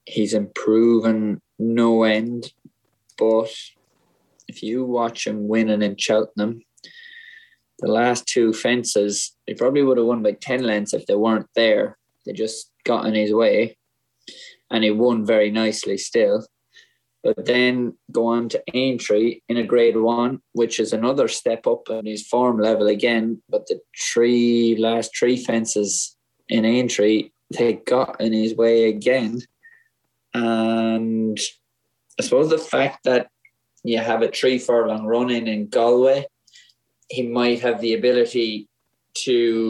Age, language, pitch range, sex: 20-39, English, 110-125 Hz, male